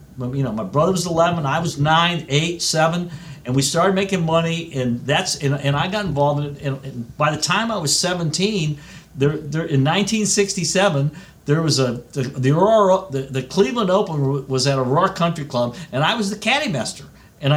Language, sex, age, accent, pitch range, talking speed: English, male, 50-69, American, 135-170 Hz, 200 wpm